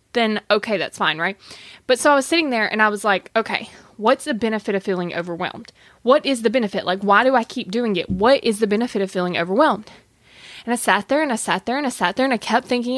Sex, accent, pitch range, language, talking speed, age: female, American, 205-265 Hz, English, 260 wpm, 20-39